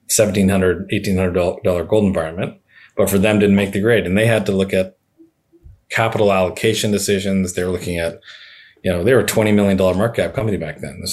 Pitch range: 90-105 Hz